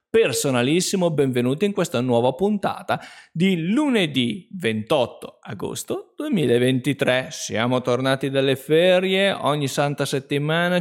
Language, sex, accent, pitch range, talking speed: Italian, male, native, 130-170 Hz, 100 wpm